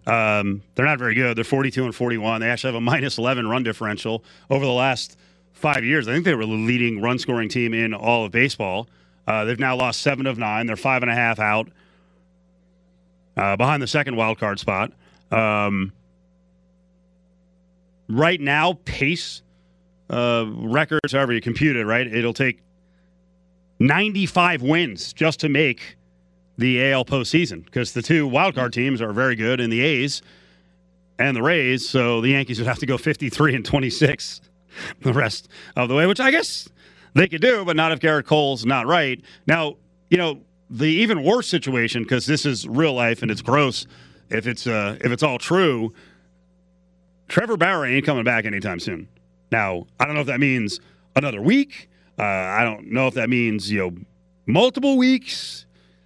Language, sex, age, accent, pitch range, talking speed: English, male, 30-49, American, 110-155 Hz, 180 wpm